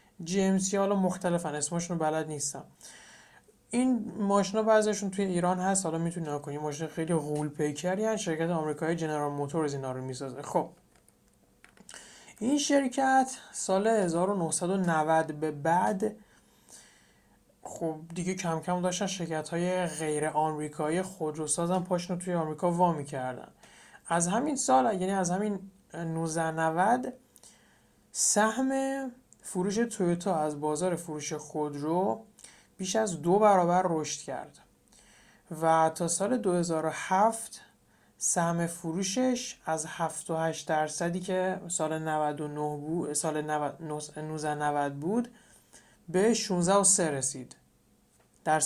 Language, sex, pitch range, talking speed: Persian, male, 155-195 Hz, 115 wpm